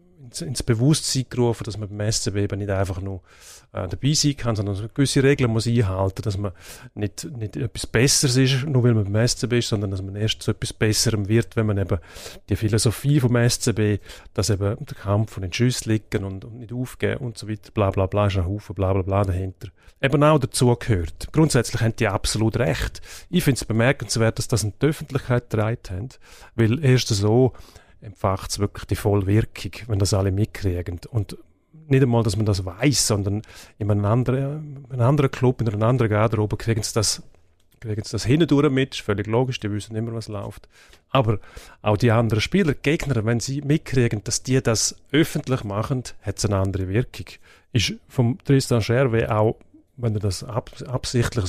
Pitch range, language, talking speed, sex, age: 100-125 Hz, German, 200 wpm, male, 40-59